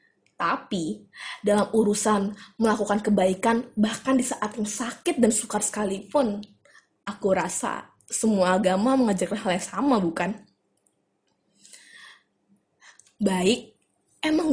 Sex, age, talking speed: female, 20-39, 100 wpm